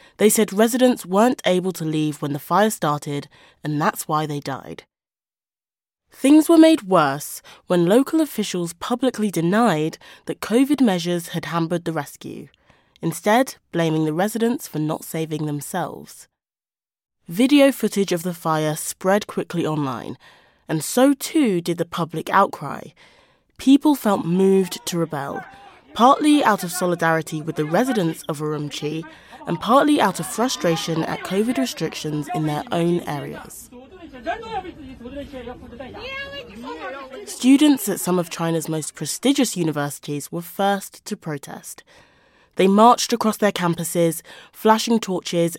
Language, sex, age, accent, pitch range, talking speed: English, female, 20-39, British, 160-245 Hz, 130 wpm